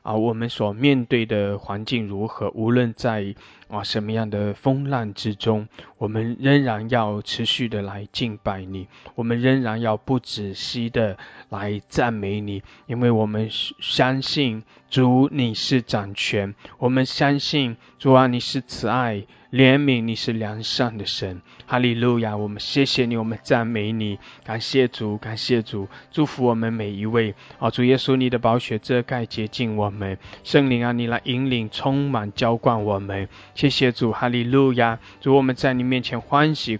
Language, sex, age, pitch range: English, male, 20-39, 105-130 Hz